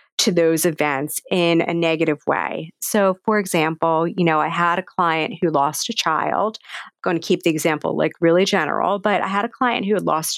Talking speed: 215 wpm